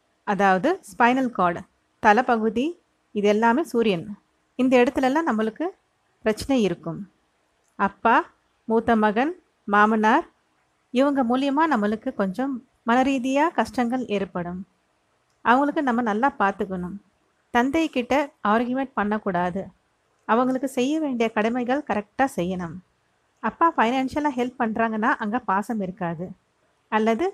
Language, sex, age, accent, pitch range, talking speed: Tamil, female, 30-49, native, 200-265 Hz, 105 wpm